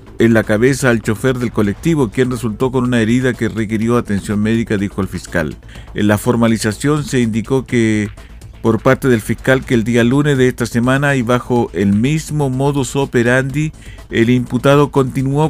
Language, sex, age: Spanish, male, 50-69